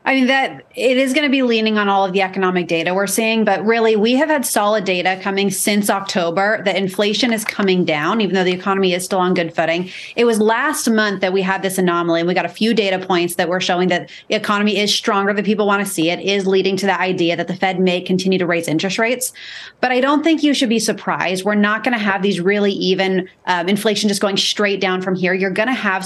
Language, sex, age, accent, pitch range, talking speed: English, female, 30-49, American, 185-215 Hz, 260 wpm